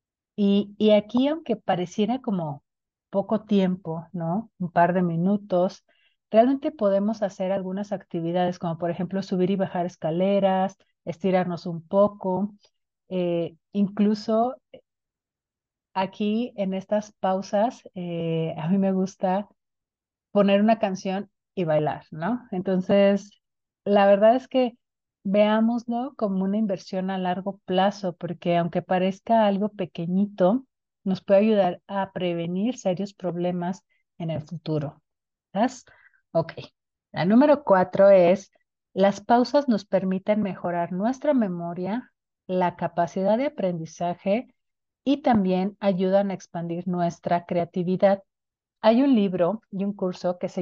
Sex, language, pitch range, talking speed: female, Spanish, 180-210 Hz, 125 wpm